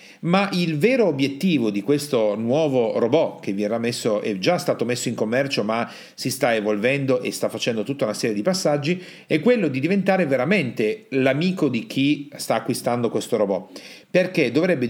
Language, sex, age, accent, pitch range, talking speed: Italian, male, 40-59, native, 110-160 Hz, 170 wpm